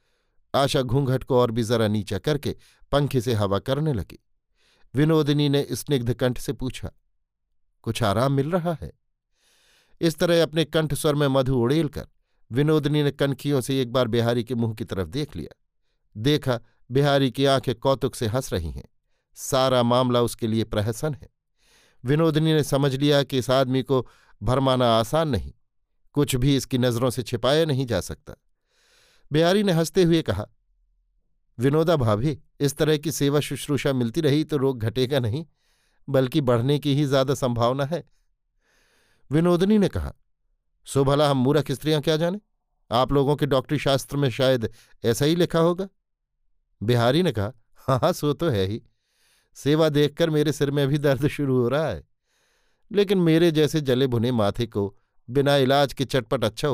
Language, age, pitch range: Hindi, 50-69, 120-150 Hz